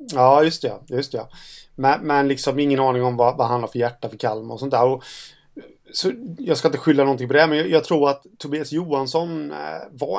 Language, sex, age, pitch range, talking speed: Swedish, male, 30-49, 125-150 Hz, 230 wpm